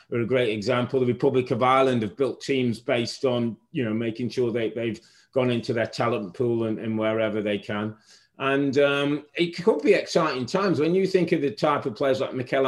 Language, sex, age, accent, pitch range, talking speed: English, male, 30-49, British, 115-140 Hz, 220 wpm